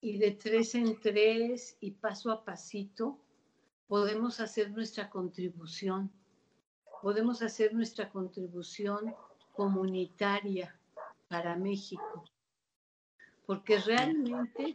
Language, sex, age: Spanish, female, 50-69